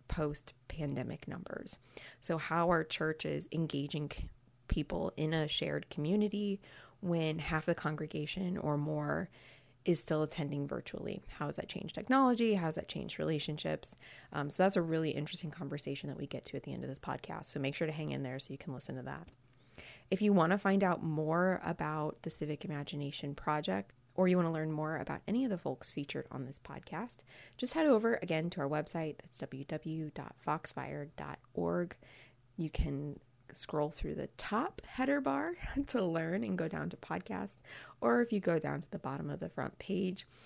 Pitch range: 145-185 Hz